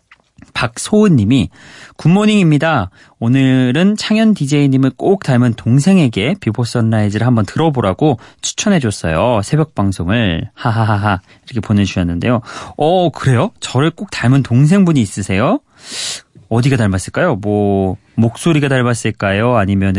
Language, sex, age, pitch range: Korean, male, 30-49, 105-150 Hz